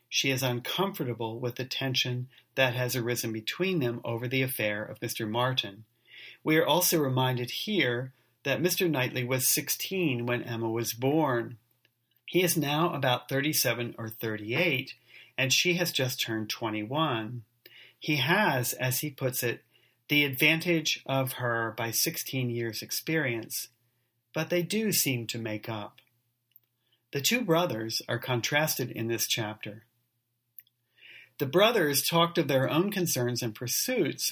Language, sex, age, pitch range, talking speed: English, male, 40-59, 120-155 Hz, 145 wpm